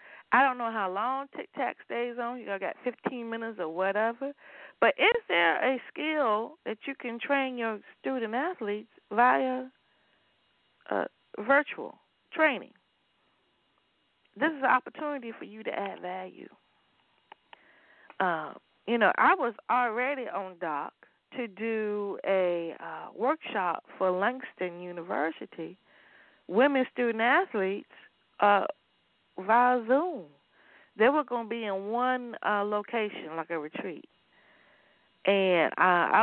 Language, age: English, 40-59